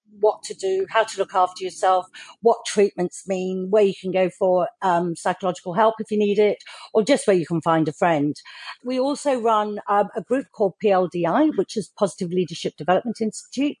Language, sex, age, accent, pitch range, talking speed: English, female, 50-69, British, 175-220 Hz, 195 wpm